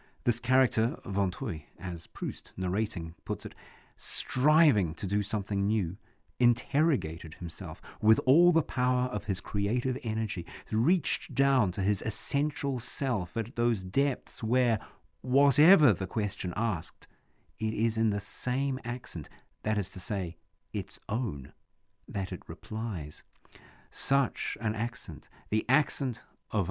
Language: English